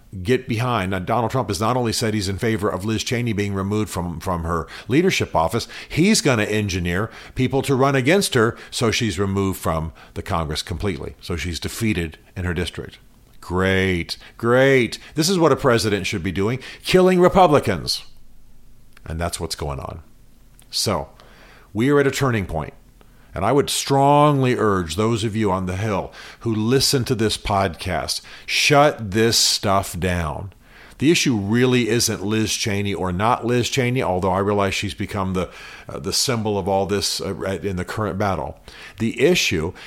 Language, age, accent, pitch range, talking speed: English, 50-69, American, 95-130 Hz, 175 wpm